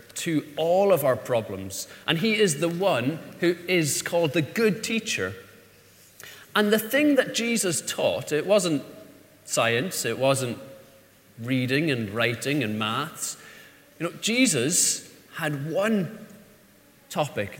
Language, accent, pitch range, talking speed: English, British, 130-180 Hz, 130 wpm